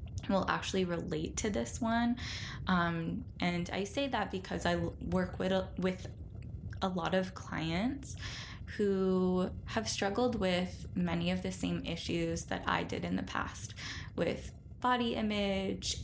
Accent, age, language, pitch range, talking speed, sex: American, 10-29, English, 140-190 Hz, 140 wpm, female